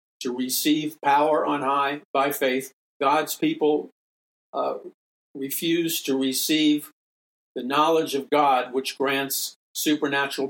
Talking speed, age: 115 wpm, 50-69